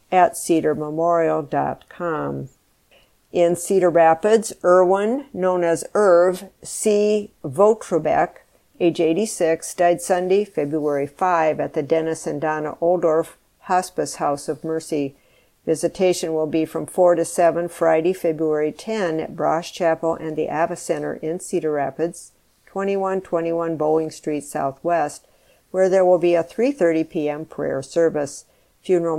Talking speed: 125 wpm